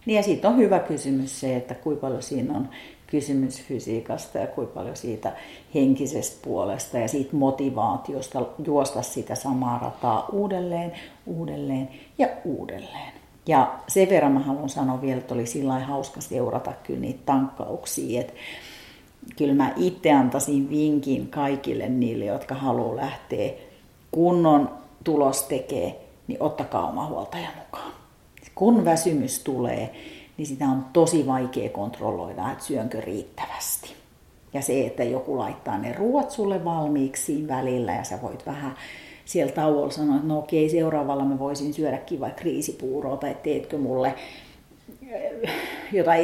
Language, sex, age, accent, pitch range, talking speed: Finnish, female, 50-69, native, 135-170 Hz, 140 wpm